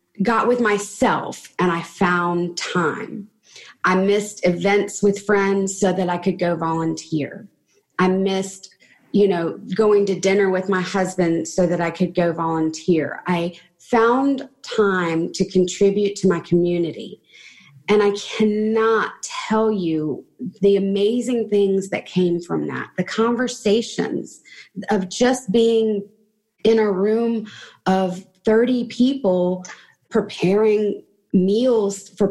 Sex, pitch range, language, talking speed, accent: female, 180-215 Hz, English, 125 wpm, American